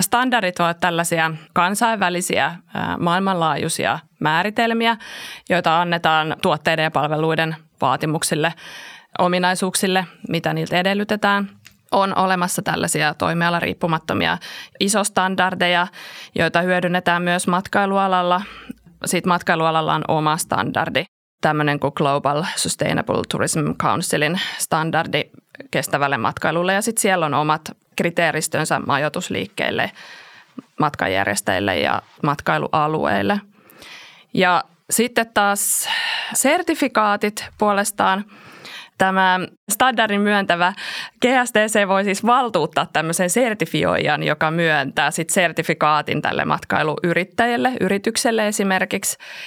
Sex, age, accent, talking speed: female, 20-39, native, 85 wpm